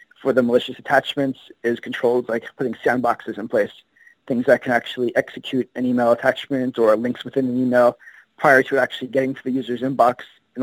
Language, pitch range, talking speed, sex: English, 125-135 Hz, 185 wpm, male